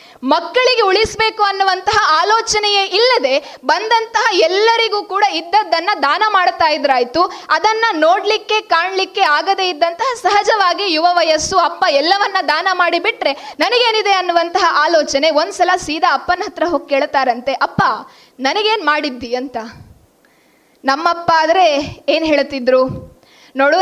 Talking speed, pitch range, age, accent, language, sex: 105 wpm, 285-395 Hz, 20-39, native, Kannada, female